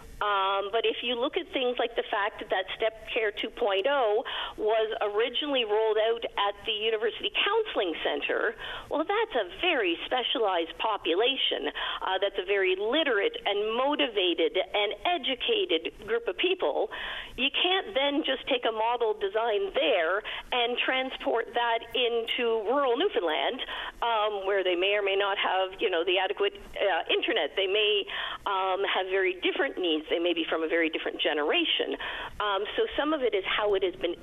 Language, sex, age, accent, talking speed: English, female, 50-69, American, 170 wpm